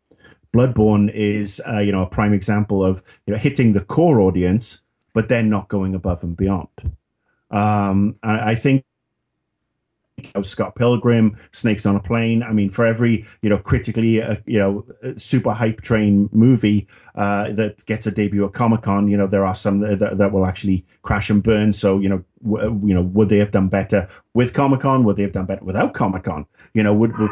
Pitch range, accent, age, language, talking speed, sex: 100-120 Hz, British, 30-49, English, 200 wpm, male